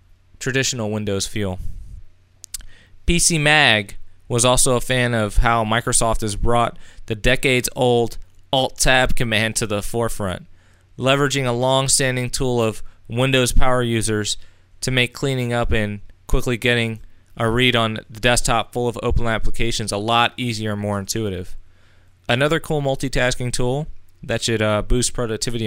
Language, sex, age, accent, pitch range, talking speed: English, male, 20-39, American, 95-125 Hz, 145 wpm